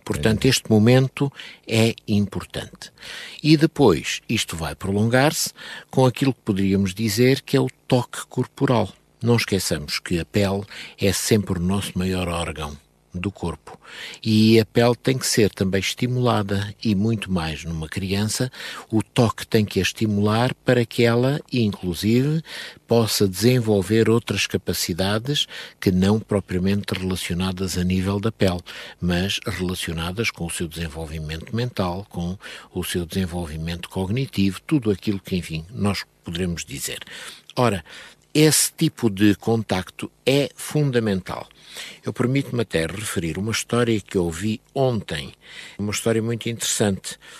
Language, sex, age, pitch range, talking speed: Portuguese, male, 50-69, 95-120 Hz, 135 wpm